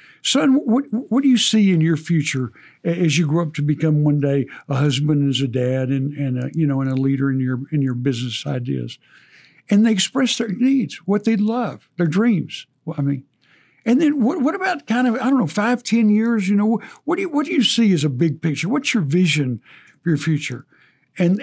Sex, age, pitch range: male, 60-79, 145-225 Hz